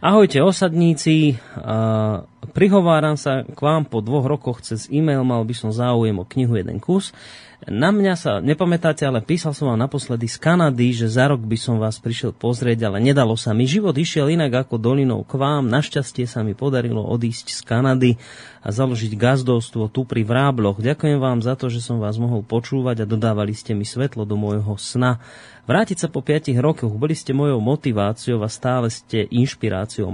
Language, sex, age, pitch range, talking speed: Slovak, male, 30-49, 115-140 Hz, 185 wpm